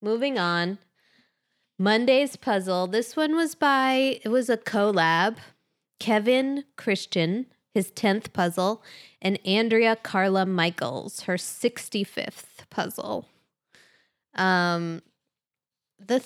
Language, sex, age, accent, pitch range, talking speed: English, female, 20-39, American, 170-220 Hz, 95 wpm